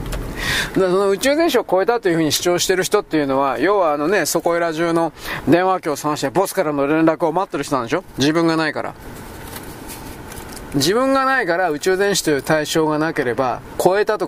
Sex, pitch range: male, 150-210 Hz